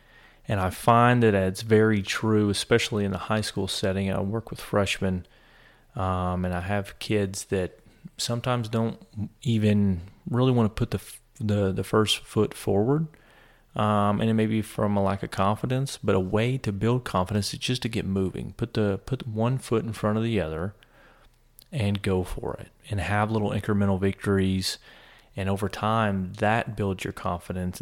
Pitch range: 95-110 Hz